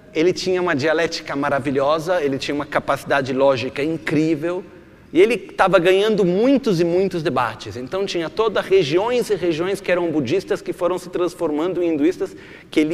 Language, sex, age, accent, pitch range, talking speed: Italian, male, 40-59, Brazilian, 155-200 Hz, 165 wpm